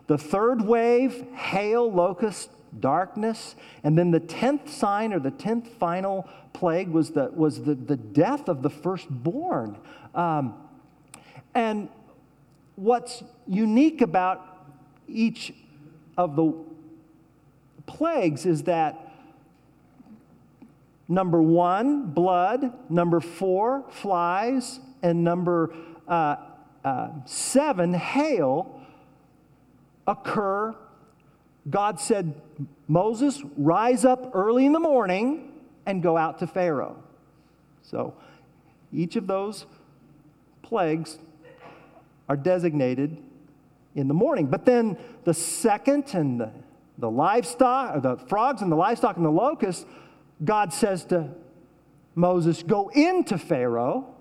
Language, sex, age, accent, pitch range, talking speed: English, male, 50-69, American, 160-235 Hz, 105 wpm